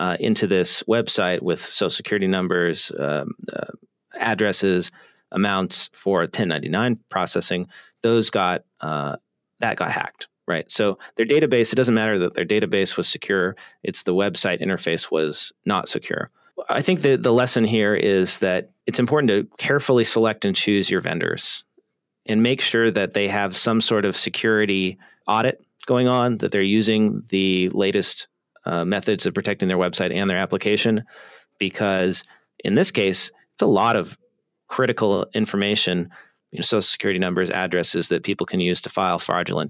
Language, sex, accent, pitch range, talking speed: English, male, American, 95-115 Hz, 160 wpm